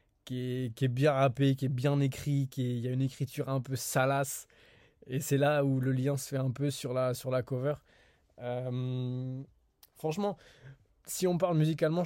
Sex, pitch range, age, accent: male, 125-140 Hz, 20-39, French